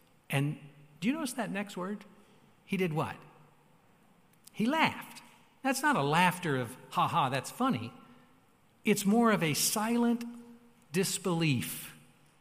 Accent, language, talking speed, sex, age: American, English, 130 wpm, male, 60-79